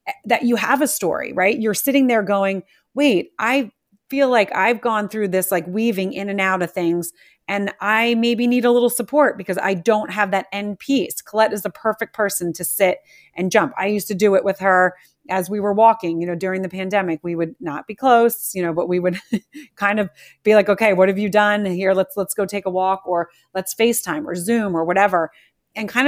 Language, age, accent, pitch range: English, 30-49, American, 185-230 Hz